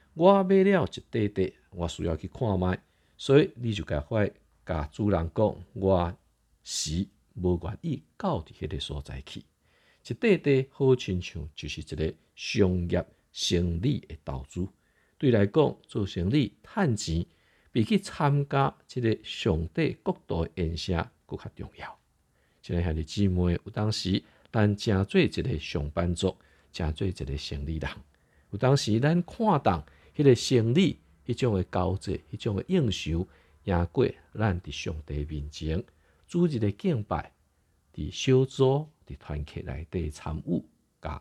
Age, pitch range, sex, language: 50-69, 80-125 Hz, male, Chinese